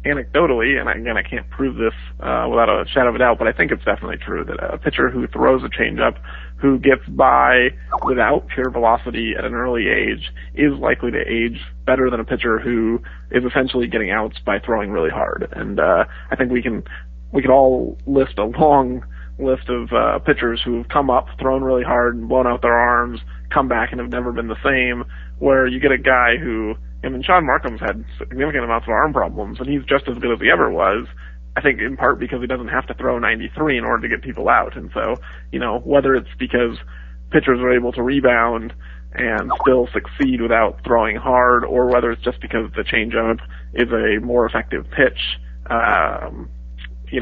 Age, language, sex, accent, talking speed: 30-49, English, male, American, 205 wpm